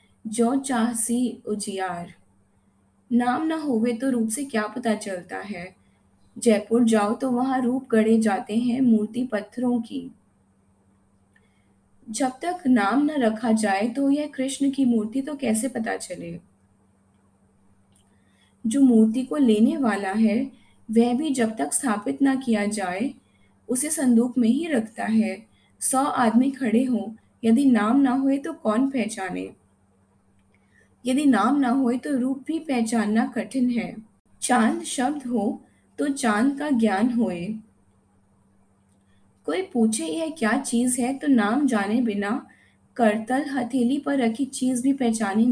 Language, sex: Hindi, female